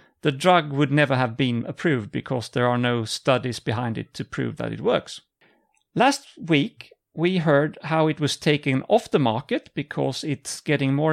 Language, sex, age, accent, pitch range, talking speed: English, male, 40-59, Norwegian, 130-180 Hz, 185 wpm